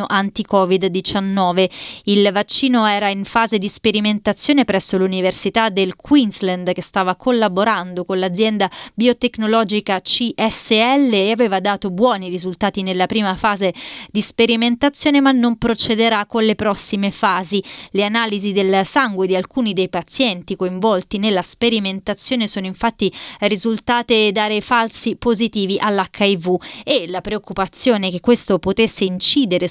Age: 30-49